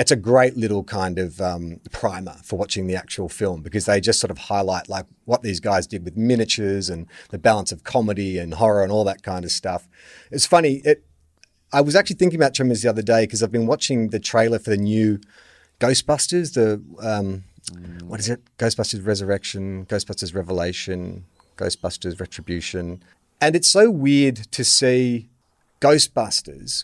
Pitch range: 100-130 Hz